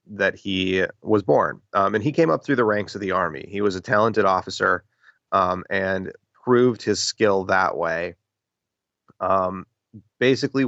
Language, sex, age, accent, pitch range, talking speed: English, male, 30-49, American, 95-115 Hz, 165 wpm